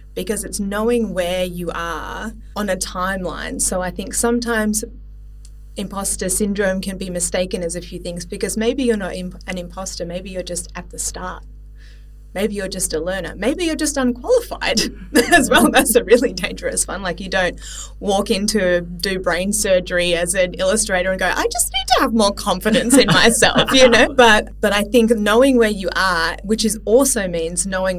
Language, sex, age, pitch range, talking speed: English, female, 20-39, 175-220 Hz, 185 wpm